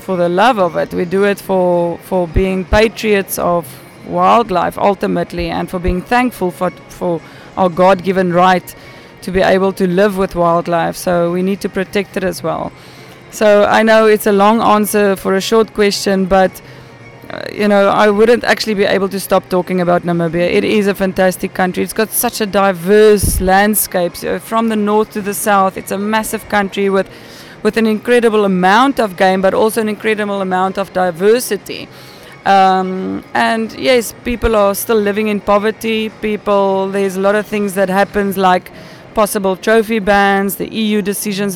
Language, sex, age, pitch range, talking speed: Hungarian, female, 20-39, 185-210 Hz, 180 wpm